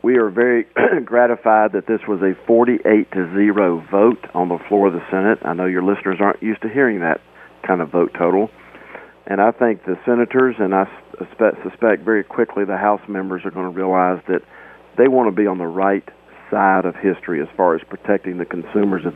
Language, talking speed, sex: English, 205 wpm, male